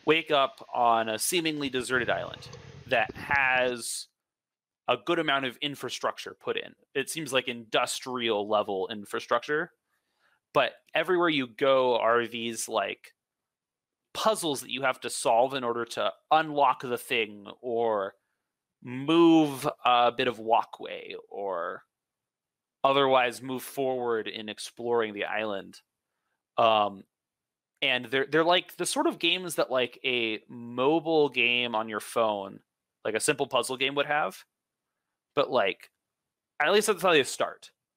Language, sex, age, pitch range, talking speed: English, male, 30-49, 115-155 Hz, 135 wpm